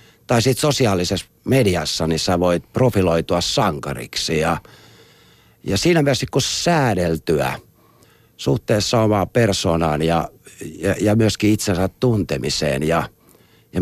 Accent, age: native, 60-79